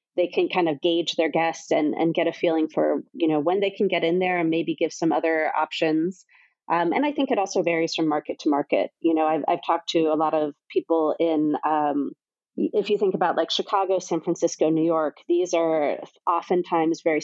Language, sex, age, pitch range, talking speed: English, female, 30-49, 165-195 Hz, 225 wpm